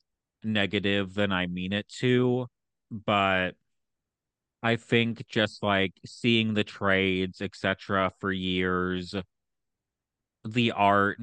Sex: male